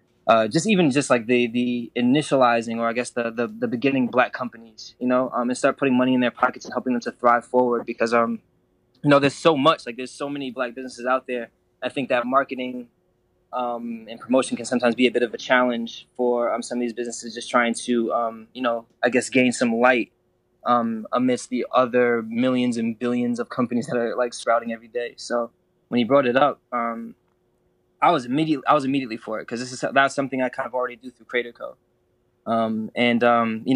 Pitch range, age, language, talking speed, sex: 115-130 Hz, 20-39, English, 225 wpm, male